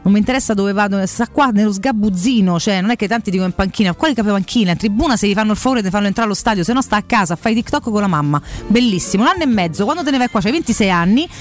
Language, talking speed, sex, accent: Italian, 295 wpm, female, native